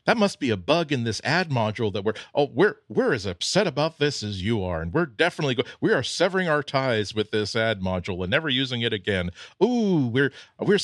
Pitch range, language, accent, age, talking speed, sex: 105-145 Hz, English, American, 40-59, 235 wpm, male